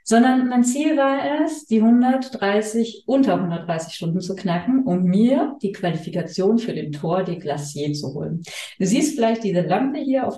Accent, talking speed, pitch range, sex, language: German, 175 wpm, 180-240 Hz, female, German